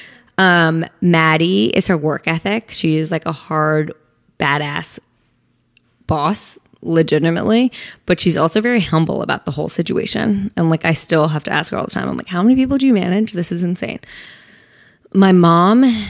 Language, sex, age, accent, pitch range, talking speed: English, female, 20-39, American, 160-195 Hz, 175 wpm